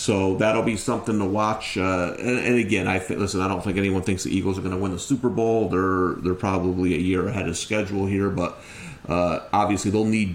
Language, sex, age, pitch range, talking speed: English, male, 30-49, 95-120 Hz, 240 wpm